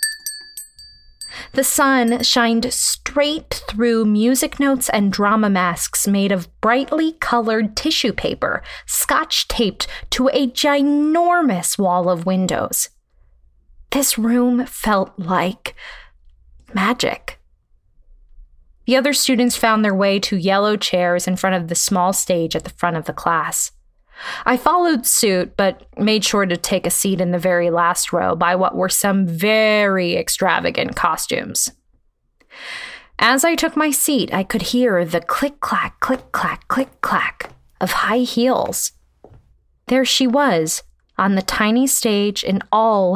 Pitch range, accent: 185-255 Hz, American